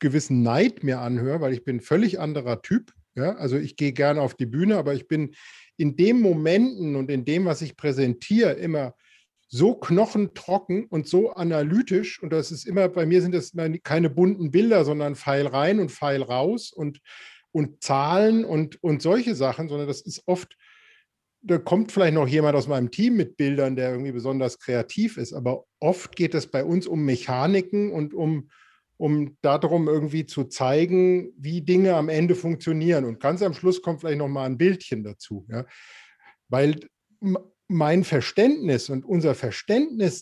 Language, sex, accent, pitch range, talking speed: German, male, German, 140-185 Hz, 175 wpm